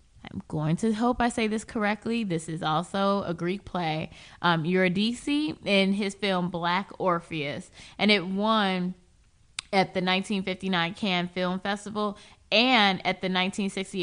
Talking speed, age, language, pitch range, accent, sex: 145 wpm, 20-39, English, 170-205 Hz, American, female